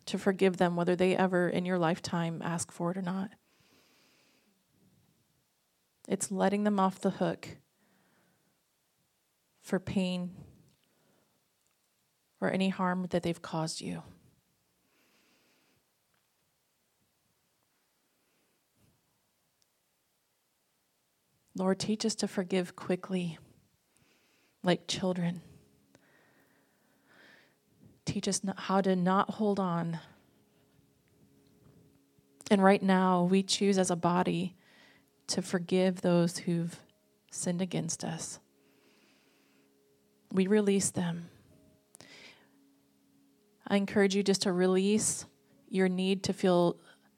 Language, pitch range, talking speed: English, 170-195 Hz, 90 wpm